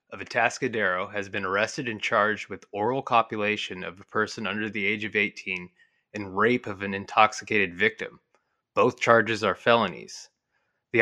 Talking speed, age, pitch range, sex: 150 wpm, 20-39, 105-125 Hz, male